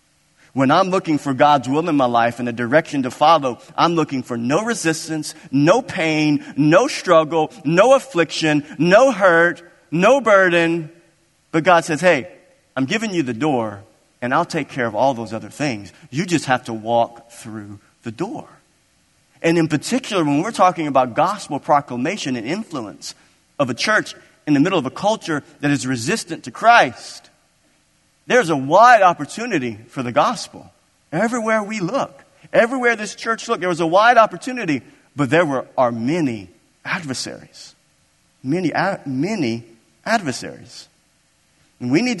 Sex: male